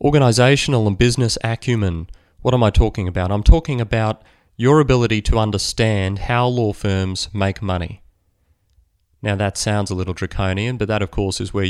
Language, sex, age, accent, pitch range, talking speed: English, male, 30-49, Australian, 90-115 Hz, 170 wpm